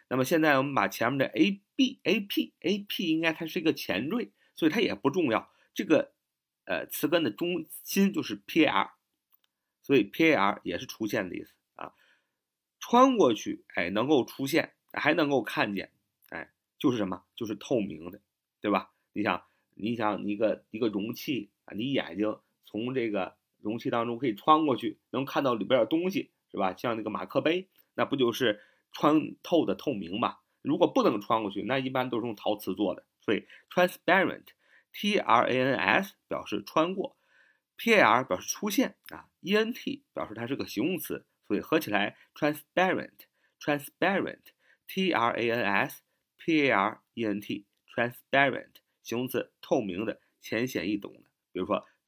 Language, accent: Chinese, native